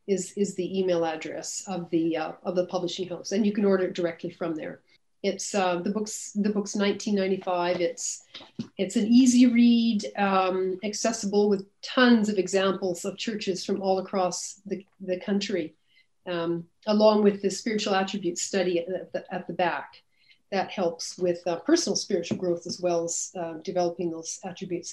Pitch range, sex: 185-240 Hz, female